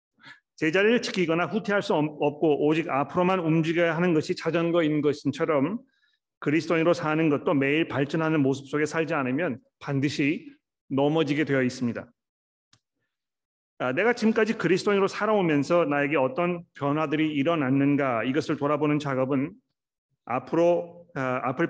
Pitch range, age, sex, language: 135-165 Hz, 40-59, male, Korean